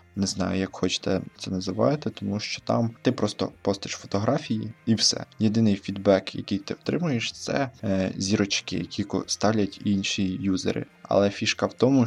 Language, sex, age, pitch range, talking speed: Ukrainian, male, 20-39, 95-105 Hz, 150 wpm